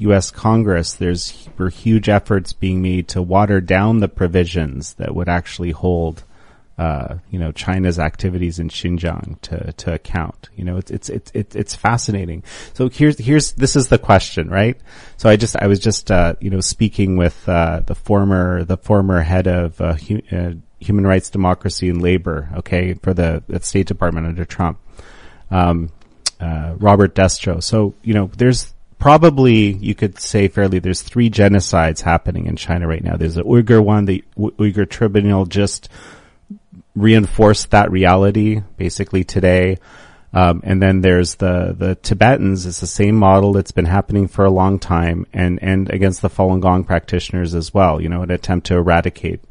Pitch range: 85-100 Hz